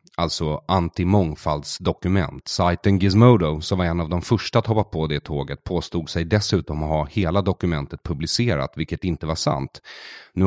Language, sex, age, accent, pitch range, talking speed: English, male, 30-49, Swedish, 80-100 Hz, 160 wpm